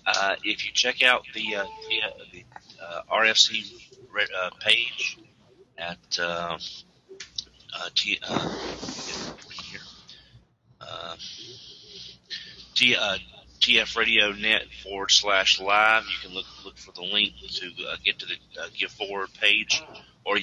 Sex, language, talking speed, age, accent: male, English, 125 wpm, 40-59, American